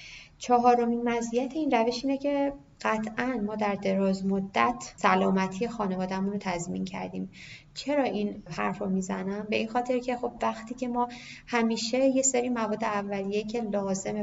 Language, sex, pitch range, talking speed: Persian, female, 190-225 Hz, 150 wpm